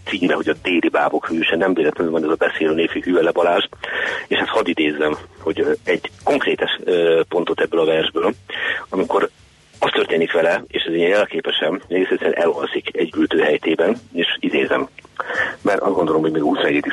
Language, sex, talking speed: Hungarian, male, 170 wpm